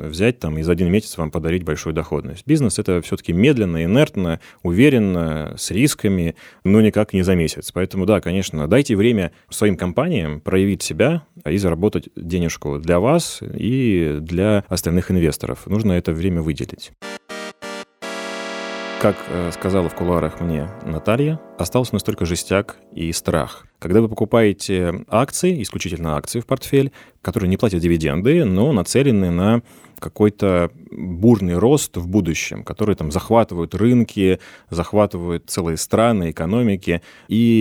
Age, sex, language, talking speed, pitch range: 30-49, male, Russian, 135 wpm, 85-105 Hz